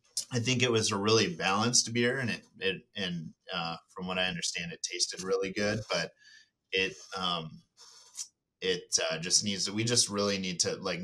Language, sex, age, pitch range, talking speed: English, male, 30-49, 90-115 Hz, 190 wpm